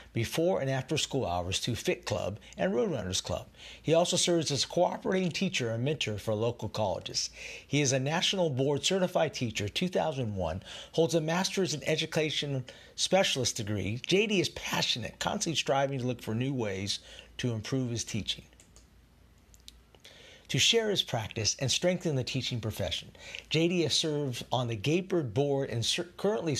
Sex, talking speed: male, 160 wpm